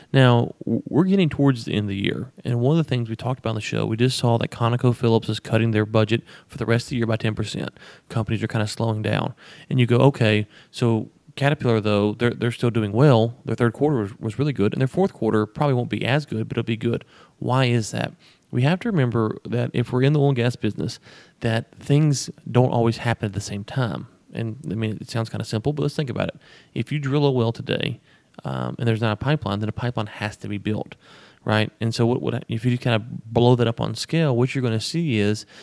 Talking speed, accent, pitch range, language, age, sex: 255 wpm, American, 110-130 Hz, English, 30-49, male